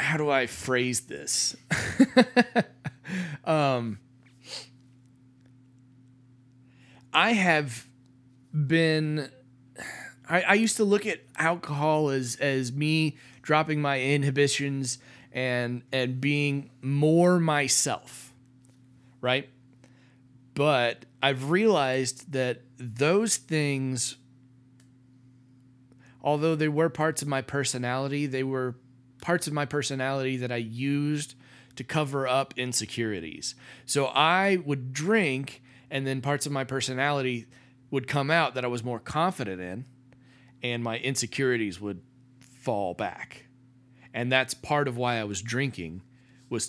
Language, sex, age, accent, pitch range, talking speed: English, male, 30-49, American, 125-145 Hz, 115 wpm